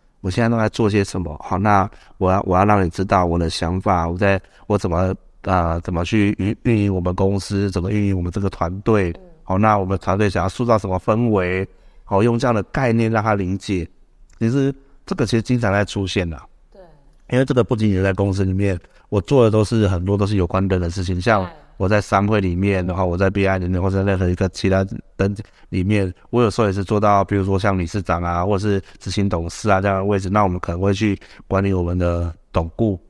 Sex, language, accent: male, Chinese, native